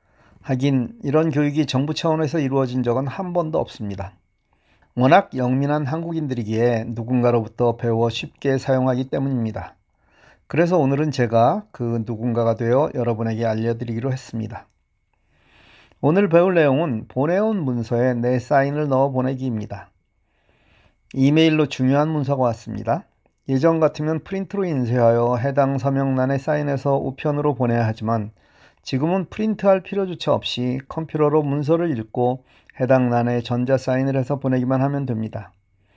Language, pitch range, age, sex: Korean, 115-145 Hz, 40-59, male